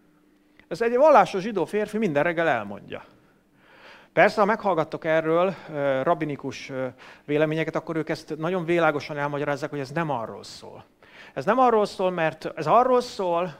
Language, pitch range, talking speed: English, 145-195 Hz, 145 wpm